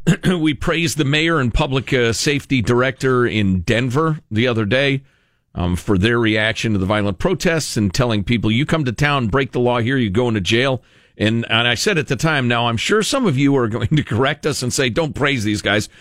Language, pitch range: English, 105-140 Hz